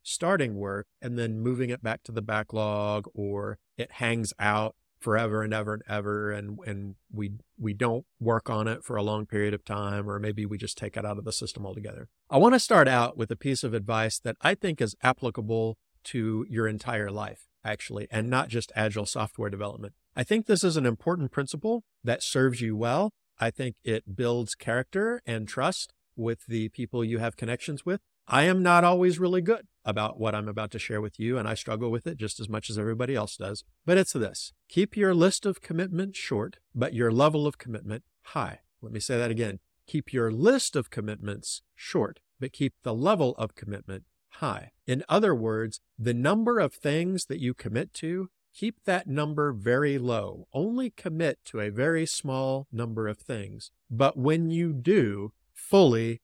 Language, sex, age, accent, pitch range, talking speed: English, male, 40-59, American, 105-145 Hz, 195 wpm